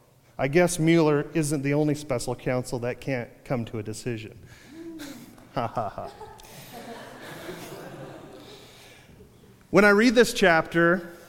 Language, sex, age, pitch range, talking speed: English, male, 30-49, 130-170 Hz, 115 wpm